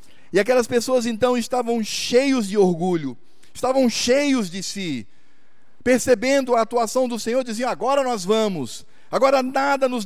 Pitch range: 160-240 Hz